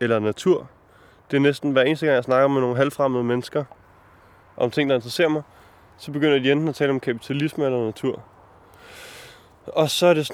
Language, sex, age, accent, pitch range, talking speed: Danish, male, 20-39, native, 115-150 Hz, 195 wpm